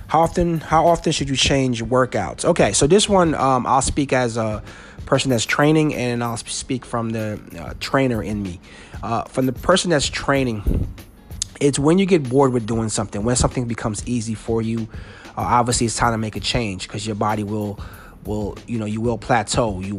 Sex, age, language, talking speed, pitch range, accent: male, 30-49, English, 205 wpm, 105-125 Hz, American